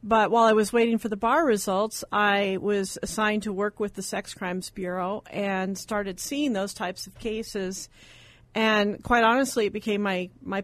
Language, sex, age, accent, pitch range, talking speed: English, female, 40-59, American, 195-225 Hz, 185 wpm